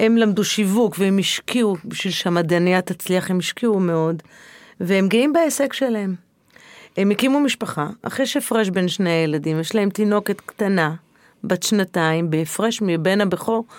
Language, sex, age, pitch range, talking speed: Hebrew, female, 30-49, 175-225 Hz, 145 wpm